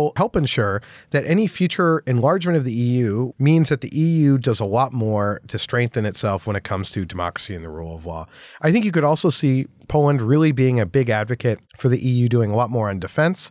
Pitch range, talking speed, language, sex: 110-150 Hz, 225 wpm, English, male